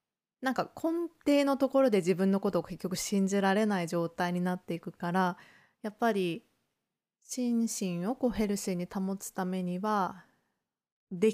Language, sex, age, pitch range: Japanese, female, 20-39, 180-230 Hz